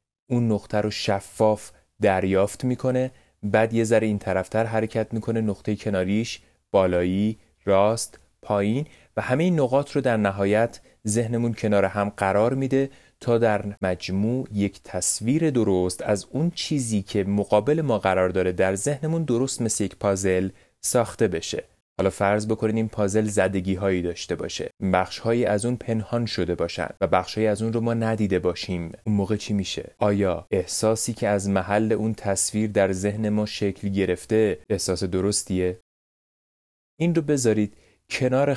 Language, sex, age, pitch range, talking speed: Persian, male, 30-49, 95-110 Hz, 150 wpm